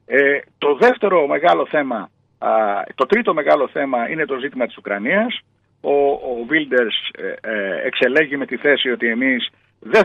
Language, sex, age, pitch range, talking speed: Greek, male, 50-69, 110-170 Hz, 160 wpm